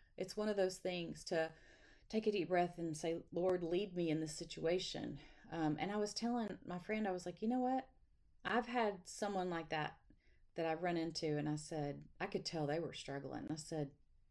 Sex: female